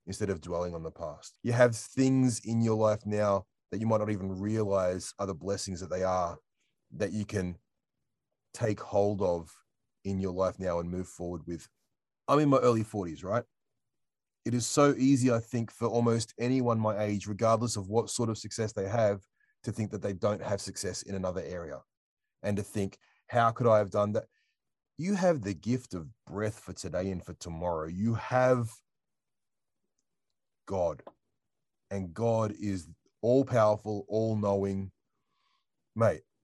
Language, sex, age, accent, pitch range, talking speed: English, male, 30-49, Australian, 95-120 Hz, 175 wpm